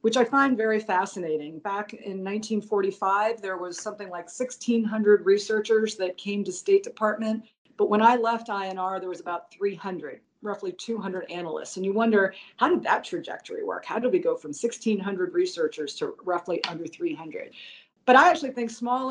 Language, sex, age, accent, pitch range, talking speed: English, female, 40-59, American, 190-250 Hz, 175 wpm